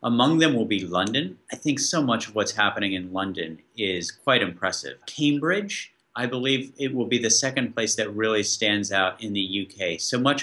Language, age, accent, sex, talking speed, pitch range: English, 40-59, American, male, 200 wpm, 105-140 Hz